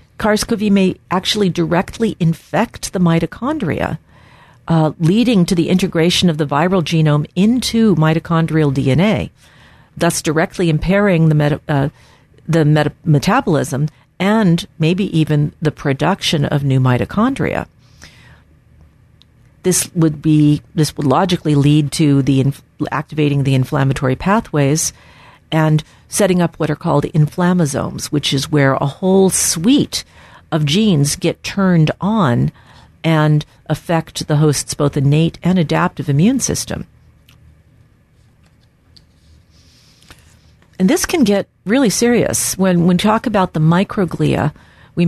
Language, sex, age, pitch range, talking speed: English, female, 50-69, 150-185 Hz, 120 wpm